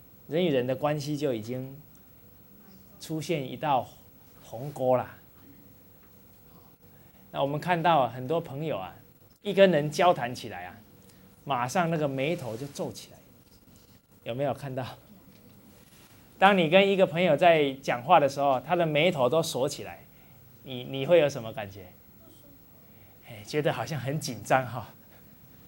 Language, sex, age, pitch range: English, male, 20-39, 110-160 Hz